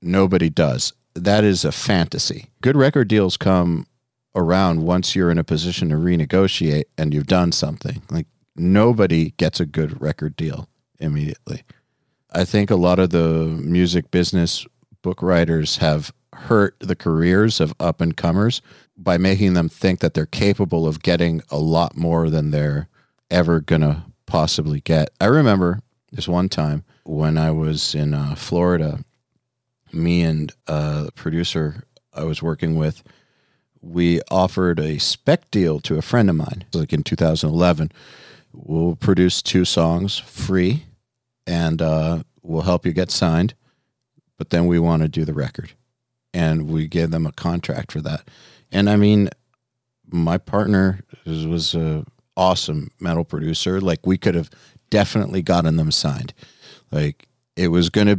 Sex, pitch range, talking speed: male, 80-95 Hz, 155 wpm